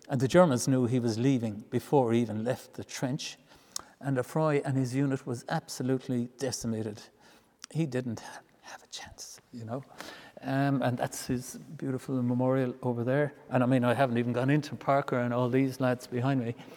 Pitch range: 120-140 Hz